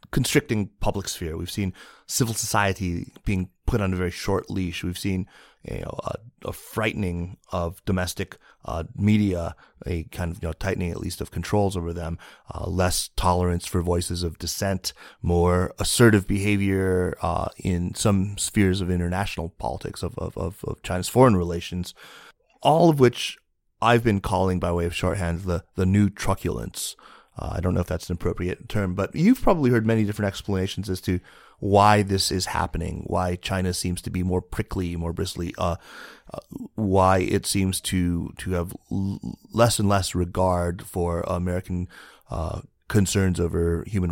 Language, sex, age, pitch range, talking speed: English, male, 30-49, 85-105 Hz, 170 wpm